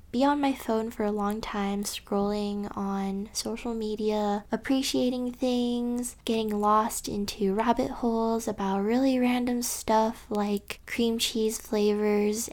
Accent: American